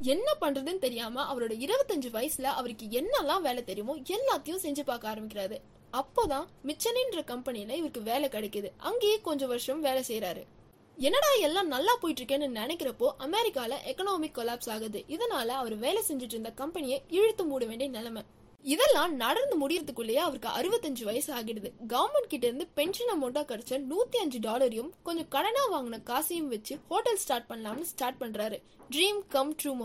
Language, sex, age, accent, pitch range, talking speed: Tamil, female, 20-39, native, 235-335 Hz, 115 wpm